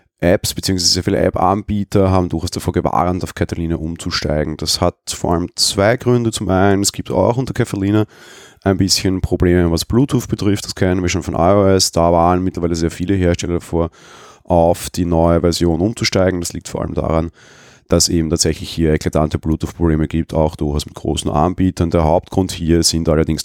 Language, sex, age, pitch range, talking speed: German, male, 30-49, 80-95 Hz, 180 wpm